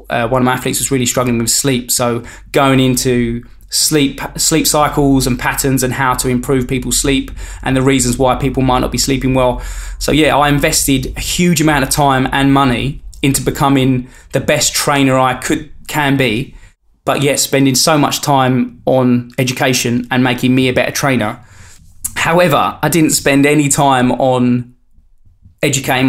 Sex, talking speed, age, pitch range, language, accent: male, 175 wpm, 20-39, 125-135 Hz, English, British